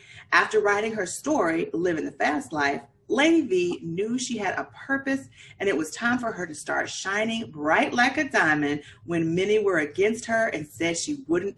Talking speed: 190 wpm